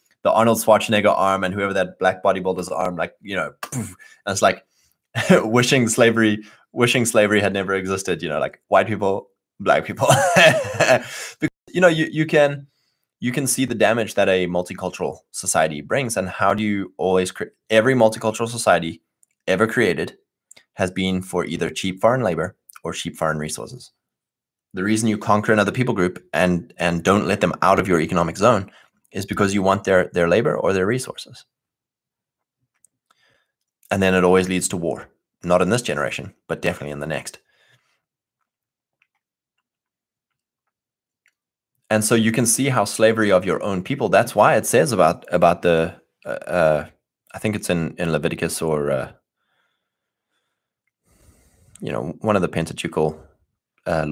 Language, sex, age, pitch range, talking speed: English, male, 20-39, 90-110 Hz, 160 wpm